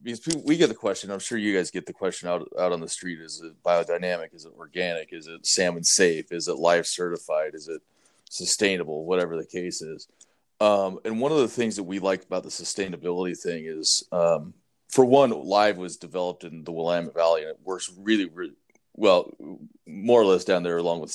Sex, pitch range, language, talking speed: male, 85-100 Hz, English, 215 wpm